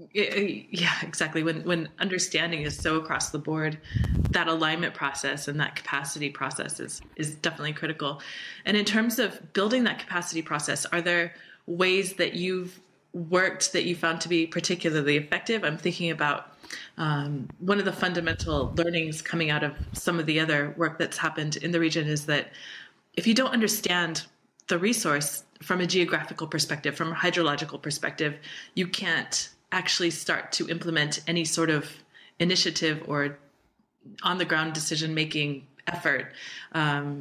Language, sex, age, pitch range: English, female, 20-39, 150-185 Hz